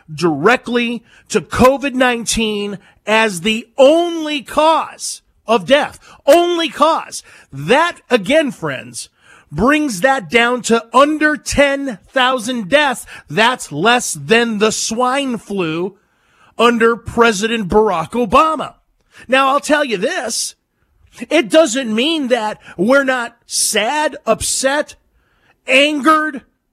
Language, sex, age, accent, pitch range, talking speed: English, male, 40-59, American, 215-275 Hz, 100 wpm